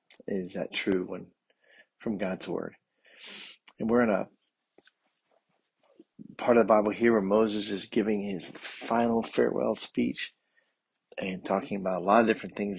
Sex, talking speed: male, 150 wpm